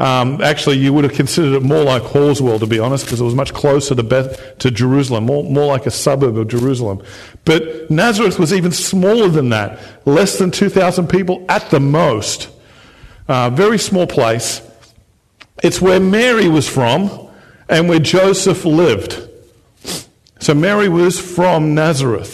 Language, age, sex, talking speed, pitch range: English, 50-69, male, 165 wpm, 130-180 Hz